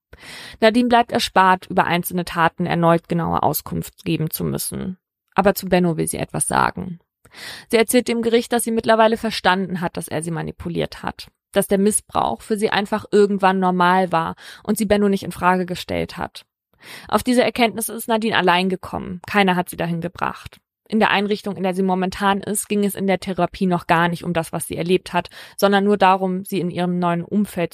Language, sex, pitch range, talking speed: German, female, 175-205 Hz, 200 wpm